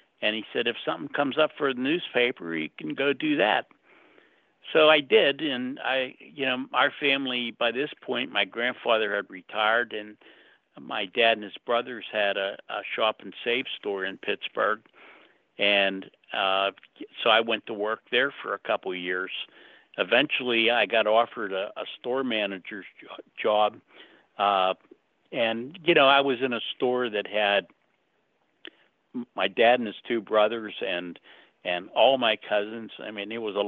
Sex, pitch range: male, 100-125 Hz